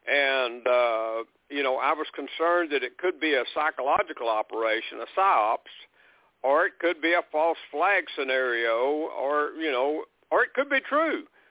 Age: 60-79